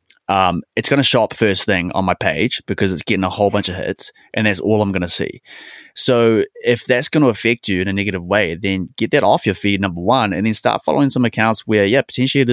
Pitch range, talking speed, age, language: 95-115 Hz, 260 wpm, 20-39, English